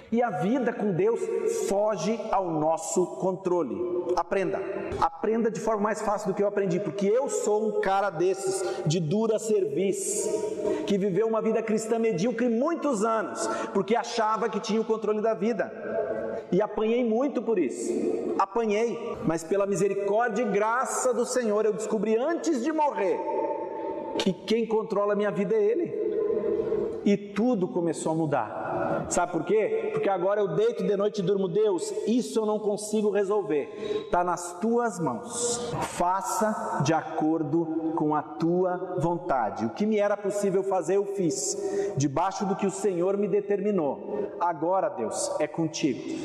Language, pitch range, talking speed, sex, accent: Portuguese, 180-230 Hz, 160 wpm, male, Brazilian